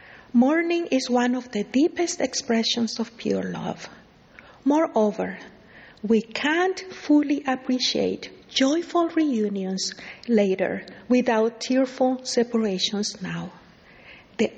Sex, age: female, 50-69